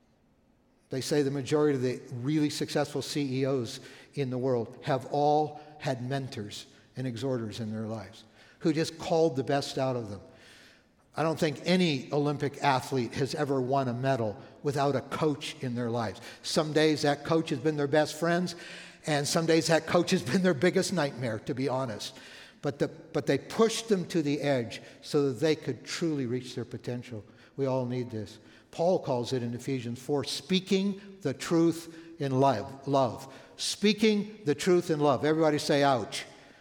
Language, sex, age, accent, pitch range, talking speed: English, male, 60-79, American, 130-160 Hz, 175 wpm